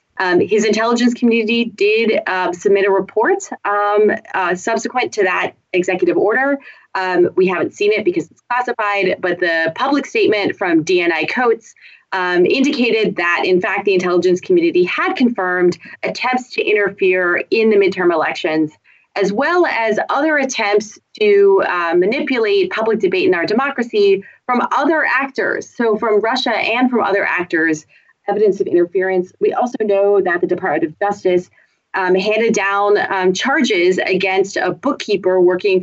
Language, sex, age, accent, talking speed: English, female, 30-49, American, 150 wpm